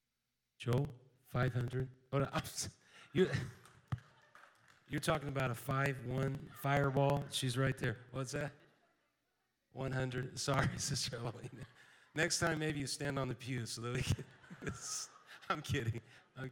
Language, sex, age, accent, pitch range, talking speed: English, male, 40-59, American, 125-145 Hz, 105 wpm